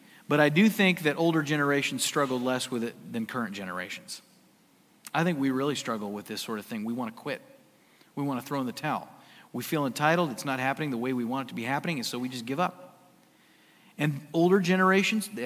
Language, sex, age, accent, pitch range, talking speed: English, male, 40-59, American, 135-175 Hz, 215 wpm